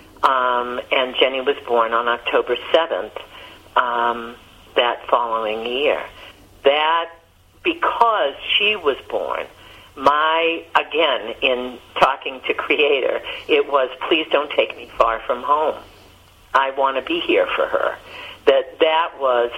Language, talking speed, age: English, 130 wpm, 50-69